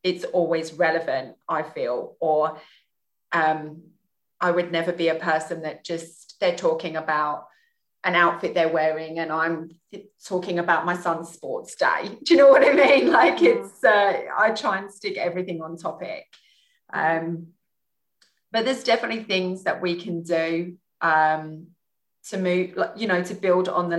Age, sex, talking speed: 30-49, female, 160 wpm